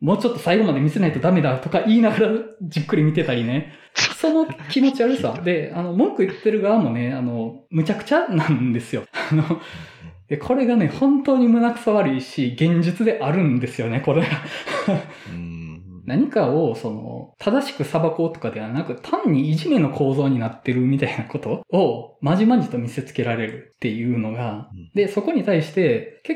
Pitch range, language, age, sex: 130-195 Hz, Japanese, 20-39, male